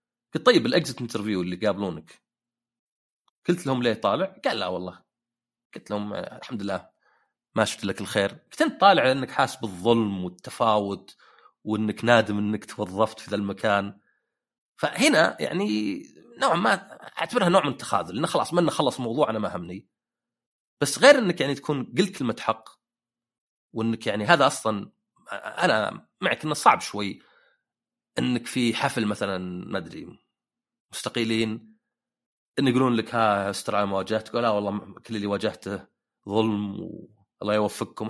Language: Arabic